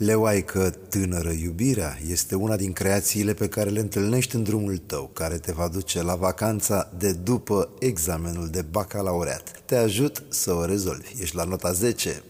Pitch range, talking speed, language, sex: 90-115 Hz, 170 wpm, Romanian, male